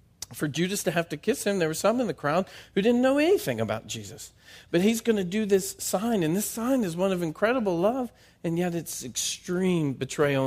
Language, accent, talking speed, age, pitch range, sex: English, American, 225 wpm, 40-59, 125-180 Hz, male